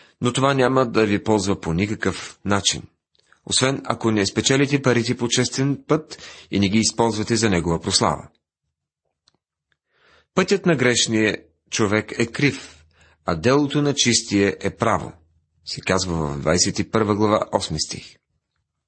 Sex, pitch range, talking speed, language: male, 95-130 Hz, 135 wpm, Bulgarian